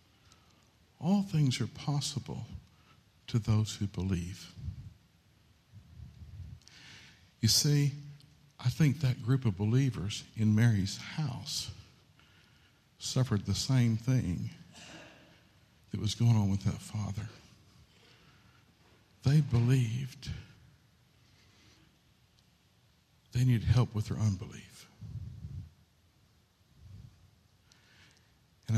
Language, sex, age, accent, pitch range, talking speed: English, male, 60-79, American, 100-125 Hz, 80 wpm